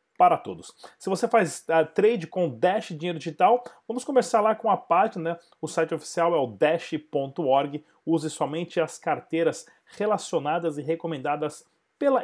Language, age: Portuguese, 30-49